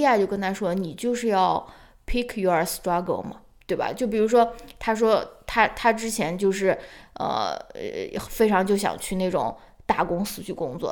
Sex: female